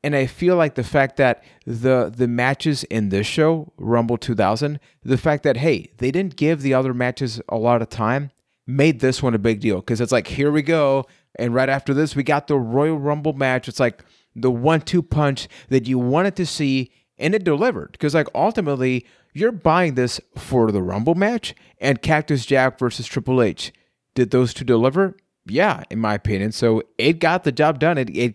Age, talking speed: 30-49, 205 wpm